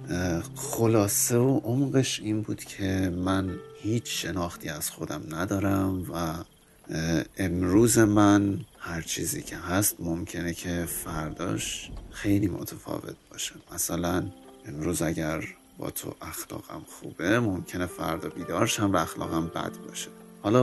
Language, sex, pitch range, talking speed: Persian, male, 85-110 Hz, 115 wpm